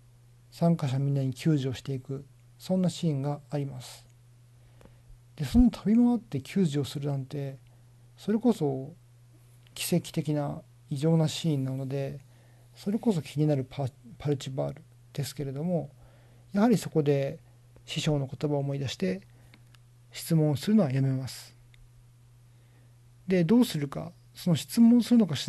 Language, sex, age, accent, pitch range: Japanese, male, 40-59, native, 120-160 Hz